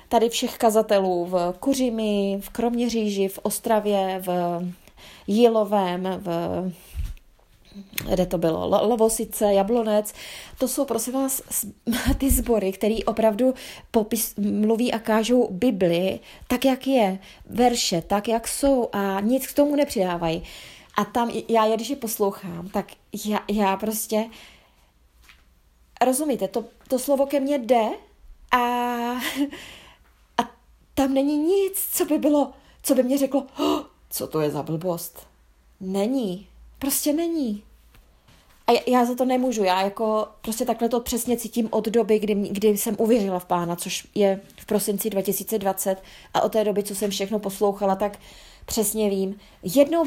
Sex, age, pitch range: female, 20-39, 195-245 Hz